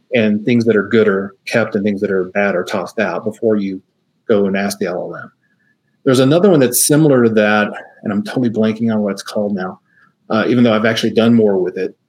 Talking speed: 235 wpm